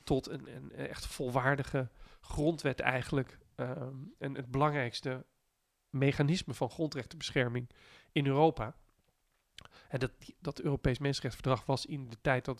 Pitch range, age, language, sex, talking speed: 125-145 Hz, 40-59, Dutch, male, 125 wpm